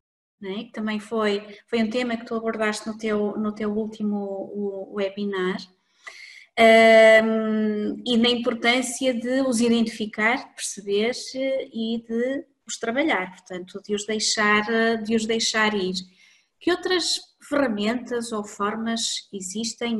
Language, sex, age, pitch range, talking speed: Portuguese, female, 20-39, 210-255 Hz, 110 wpm